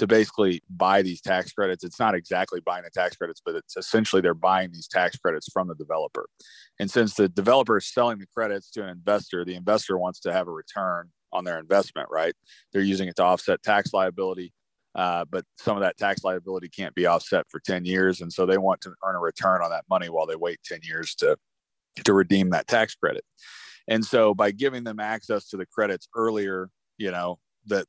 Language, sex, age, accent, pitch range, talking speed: English, male, 30-49, American, 90-110 Hz, 215 wpm